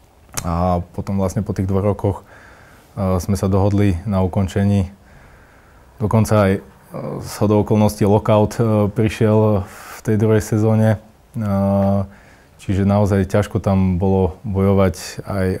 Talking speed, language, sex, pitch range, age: 135 wpm, Slovak, male, 90-100 Hz, 20-39